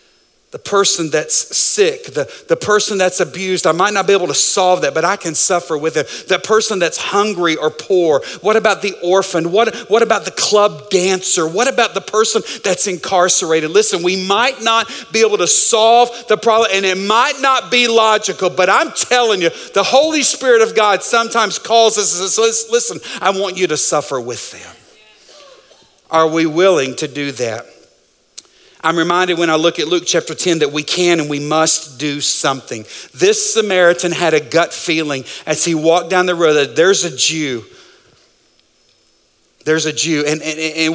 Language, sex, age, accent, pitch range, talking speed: English, male, 50-69, American, 160-215 Hz, 185 wpm